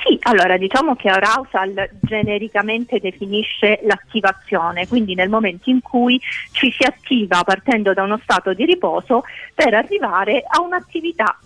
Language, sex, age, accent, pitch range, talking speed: Italian, female, 40-59, native, 200-285 Hz, 135 wpm